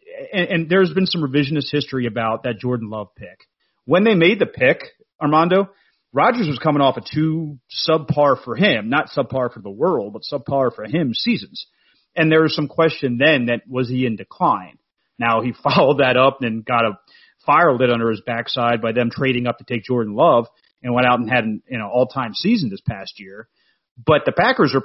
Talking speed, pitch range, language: 205 wpm, 120-170 Hz, English